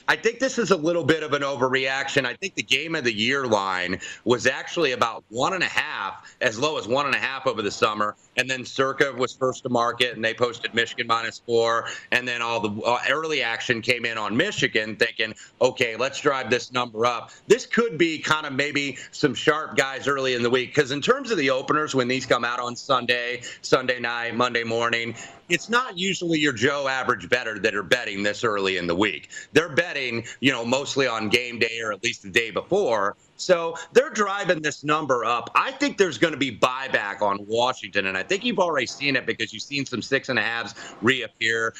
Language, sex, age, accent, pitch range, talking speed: English, male, 30-49, American, 115-150 Hz, 220 wpm